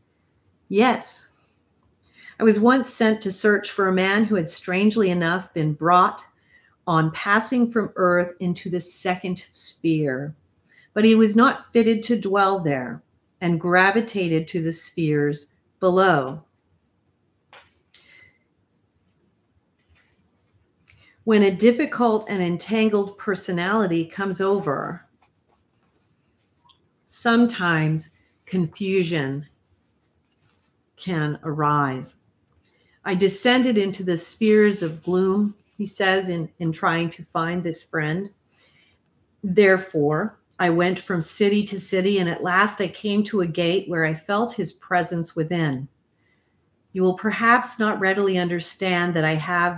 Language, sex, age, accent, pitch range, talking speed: English, female, 40-59, American, 165-205 Hz, 115 wpm